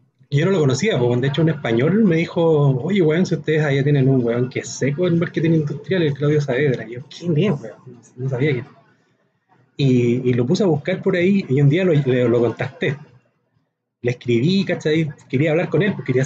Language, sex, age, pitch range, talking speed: Spanish, male, 30-49, 130-160 Hz, 225 wpm